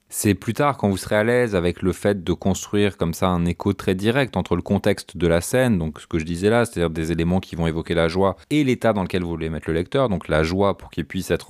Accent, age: French, 20-39